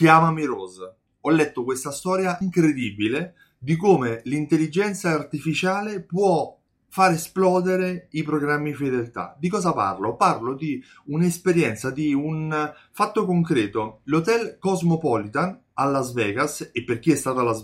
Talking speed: 135 wpm